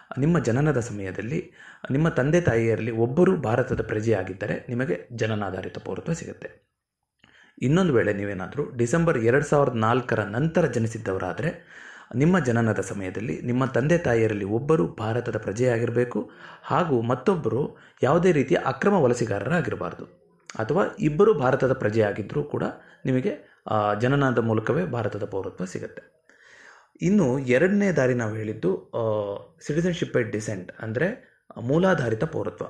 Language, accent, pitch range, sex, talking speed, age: Kannada, native, 110-140 Hz, male, 105 wpm, 20-39